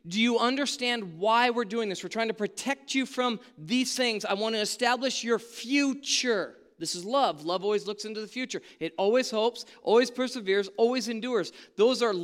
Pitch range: 220-300 Hz